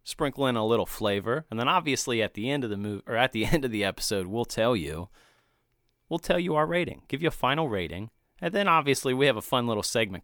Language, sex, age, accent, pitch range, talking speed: English, male, 30-49, American, 105-140 Hz, 250 wpm